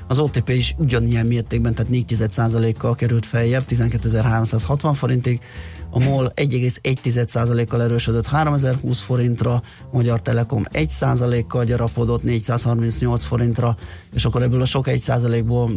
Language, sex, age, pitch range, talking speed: Hungarian, male, 30-49, 115-125 Hz, 115 wpm